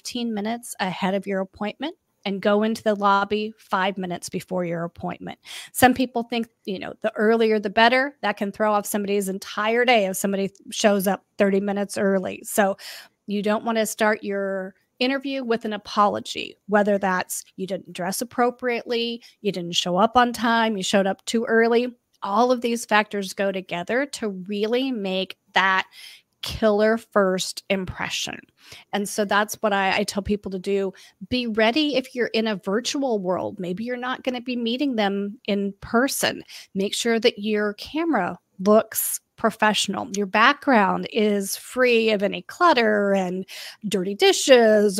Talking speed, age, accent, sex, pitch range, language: 165 wpm, 30-49, American, female, 200-240 Hz, English